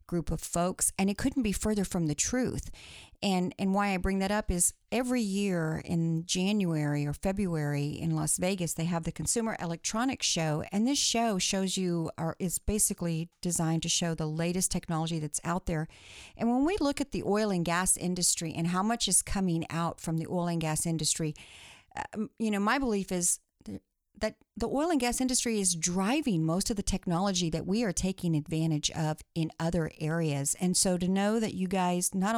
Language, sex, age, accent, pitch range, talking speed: English, female, 50-69, American, 160-200 Hz, 200 wpm